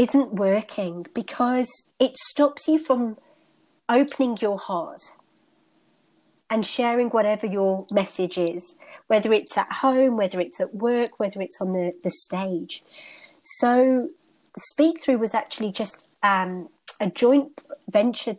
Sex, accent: female, British